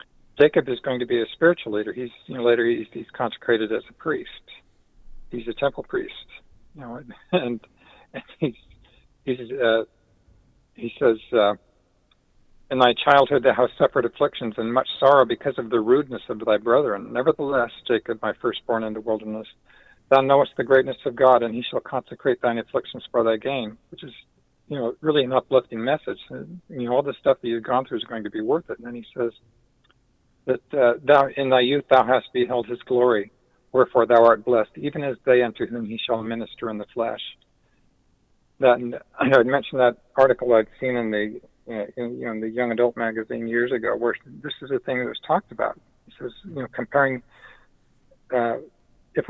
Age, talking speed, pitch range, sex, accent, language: 50-69, 195 wpm, 115-135 Hz, male, American, English